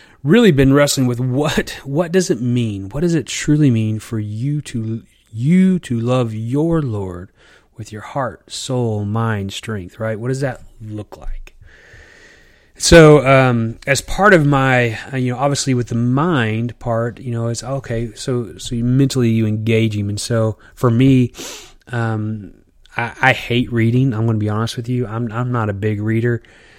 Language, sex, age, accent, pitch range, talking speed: English, male, 30-49, American, 110-130 Hz, 180 wpm